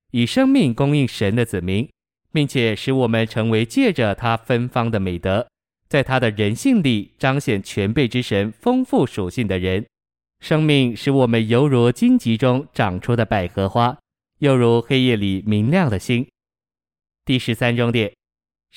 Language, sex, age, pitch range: Chinese, male, 20-39, 105-130 Hz